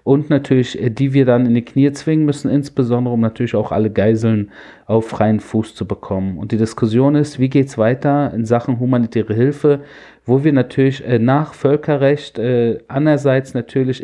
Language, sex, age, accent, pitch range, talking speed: German, male, 40-59, German, 115-140 Hz, 165 wpm